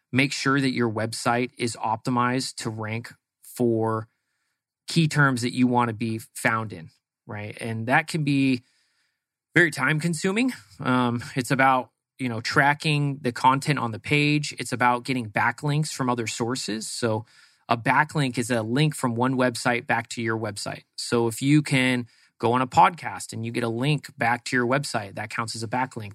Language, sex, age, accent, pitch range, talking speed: English, male, 30-49, American, 115-135 Hz, 185 wpm